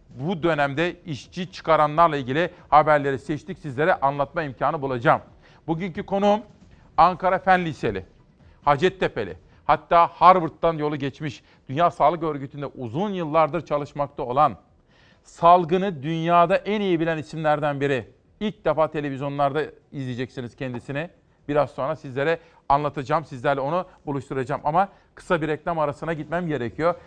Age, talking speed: 40-59, 120 wpm